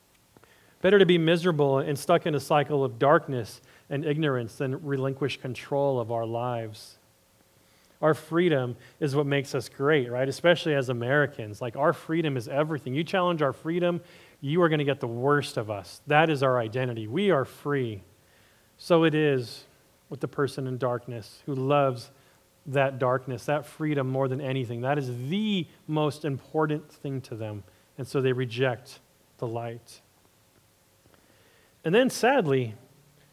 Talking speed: 160 wpm